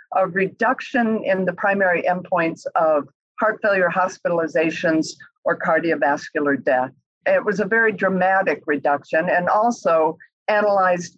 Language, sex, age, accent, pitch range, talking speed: English, female, 50-69, American, 155-205 Hz, 120 wpm